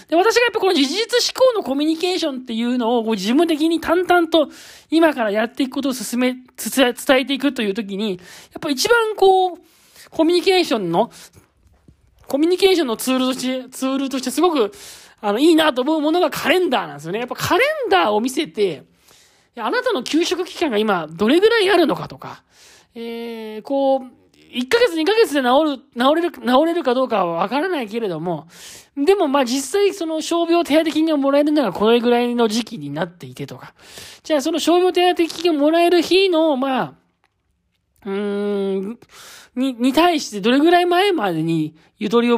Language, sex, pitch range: Japanese, male, 225-330 Hz